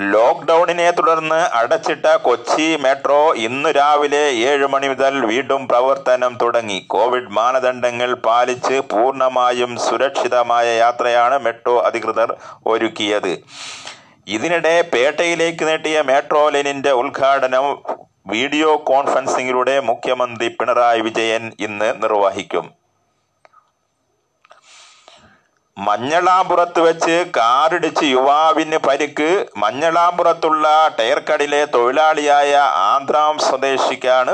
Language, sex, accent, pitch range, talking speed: Malayalam, male, native, 120-155 Hz, 80 wpm